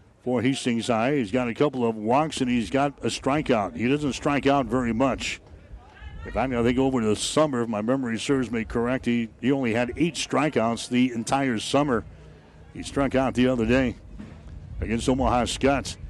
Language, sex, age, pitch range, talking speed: English, male, 60-79, 115-135 Hz, 190 wpm